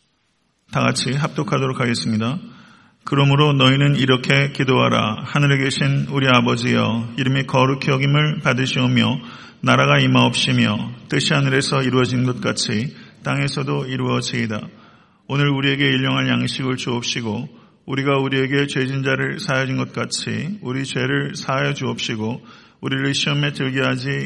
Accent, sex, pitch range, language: native, male, 125-145 Hz, Korean